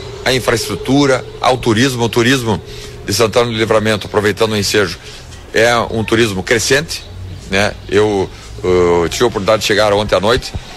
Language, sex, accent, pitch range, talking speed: Portuguese, male, Brazilian, 105-135 Hz, 155 wpm